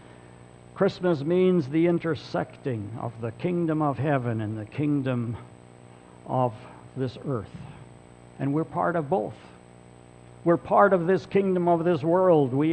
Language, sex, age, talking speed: English, male, 60-79, 135 wpm